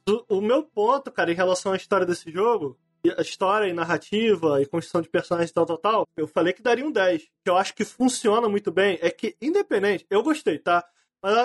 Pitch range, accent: 195-270 Hz, Brazilian